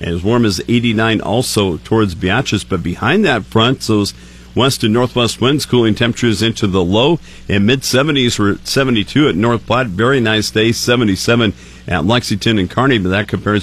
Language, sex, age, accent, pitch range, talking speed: English, male, 50-69, American, 100-125 Hz, 175 wpm